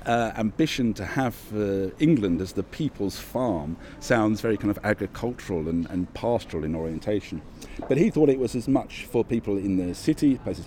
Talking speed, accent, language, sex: 185 wpm, British, English, male